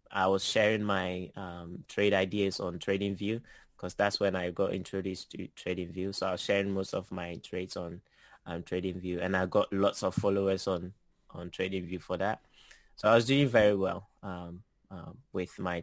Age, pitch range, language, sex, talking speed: 20-39, 90-105 Hz, English, male, 185 wpm